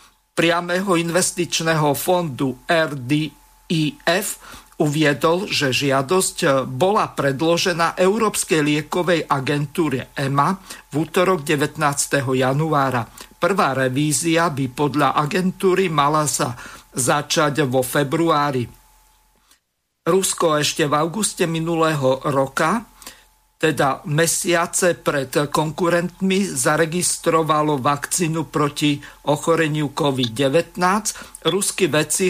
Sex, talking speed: male, 80 wpm